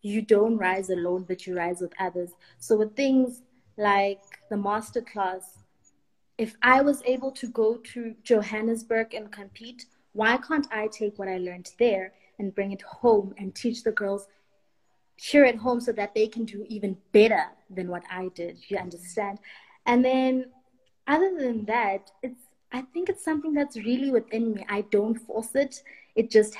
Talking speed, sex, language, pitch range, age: 175 wpm, female, English, 200-235 Hz, 20-39